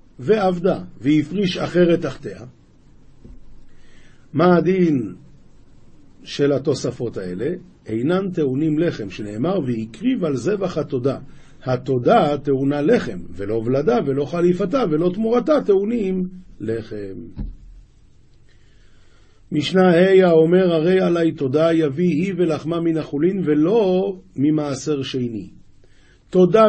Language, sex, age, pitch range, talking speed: Hebrew, male, 50-69, 135-185 Hz, 95 wpm